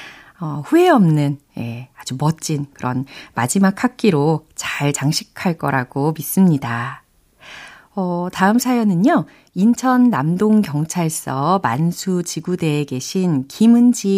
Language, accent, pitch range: Korean, native, 150-220 Hz